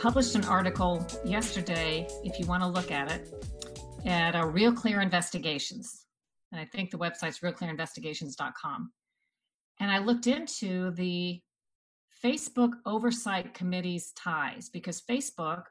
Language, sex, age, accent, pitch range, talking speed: English, female, 40-59, American, 170-215 Hz, 125 wpm